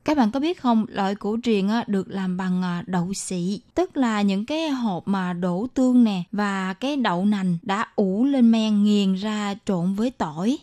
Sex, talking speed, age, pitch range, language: female, 200 wpm, 20-39, 195-250 Hz, Vietnamese